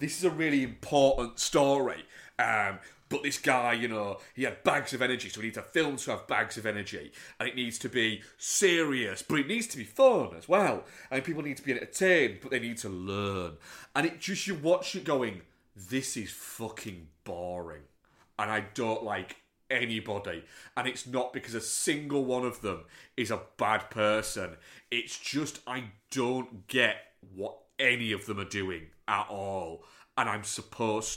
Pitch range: 110-150 Hz